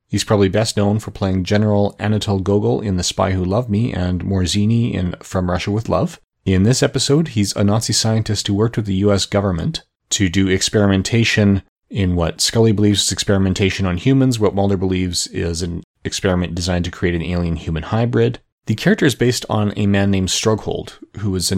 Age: 30-49